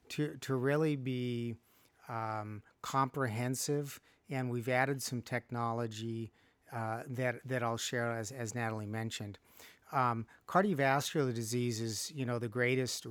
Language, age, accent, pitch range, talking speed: English, 40-59, American, 115-130 Hz, 130 wpm